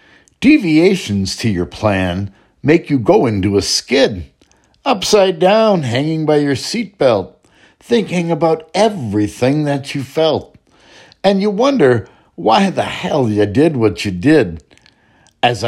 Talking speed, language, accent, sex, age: 130 wpm, English, American, male, 60-79